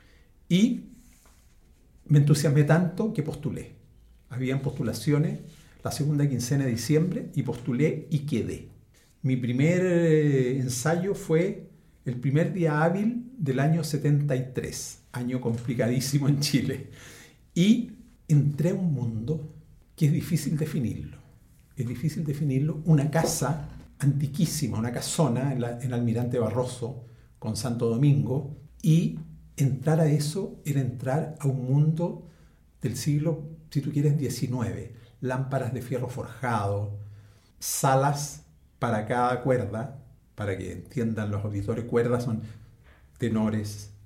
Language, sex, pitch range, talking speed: Spanish, male, 115-150 Hz, 120 wpm